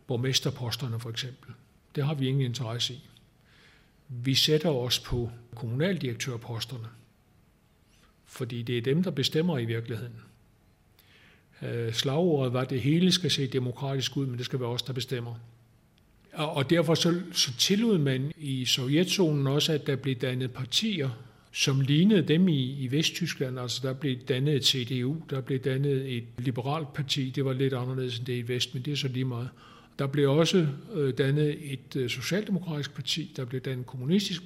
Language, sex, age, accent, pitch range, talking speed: Danish, male, 60-79, native, 125-150 Hz, 170 wpm